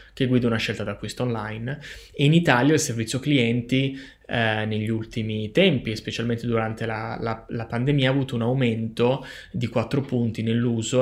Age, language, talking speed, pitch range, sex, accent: 20-39, Italian, 160 wpm, 115-150 Hz, male, native